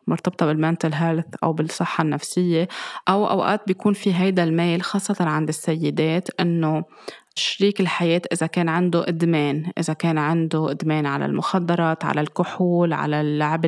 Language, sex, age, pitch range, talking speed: Arabic, female, 20-39, 160-180 Hz, 140 wpm